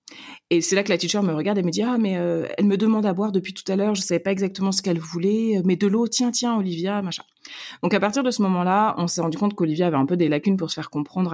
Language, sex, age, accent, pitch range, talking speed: French, female, 30-49, French, 155-190 Hz, 310 wpm